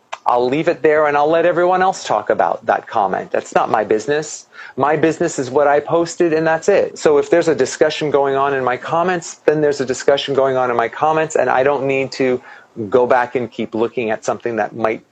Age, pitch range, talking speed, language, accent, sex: 40-59, 120-155 Hz, 235 wpm, English, American, male